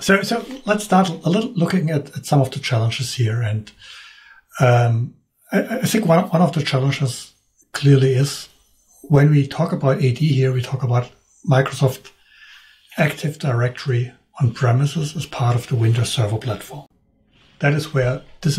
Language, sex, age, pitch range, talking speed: English, male, 60-79, 125-155 Hz, 165 wpm